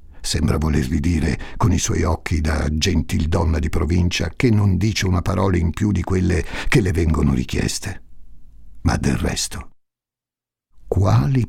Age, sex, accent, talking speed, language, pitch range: 60-79, male, native, 145 wpm, Italian, 85-130 Hz